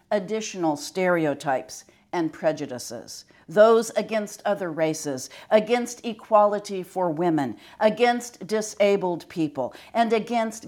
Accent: American